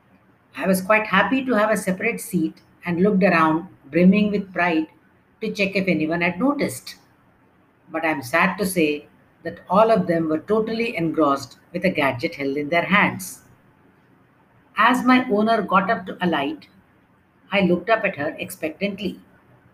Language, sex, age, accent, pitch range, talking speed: English, female, 60-79, Indian, 165-210 Hz, 160 wpm